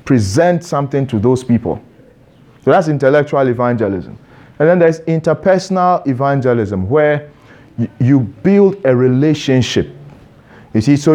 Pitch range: 110-160 Hz